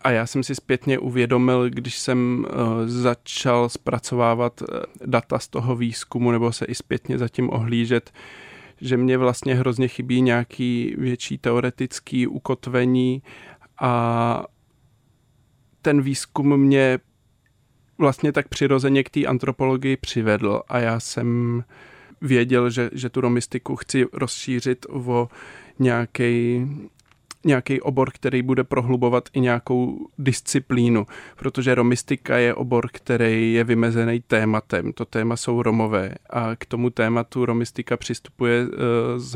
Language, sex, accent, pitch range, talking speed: Czech, male, native, 120-130 Hz, 120 wpm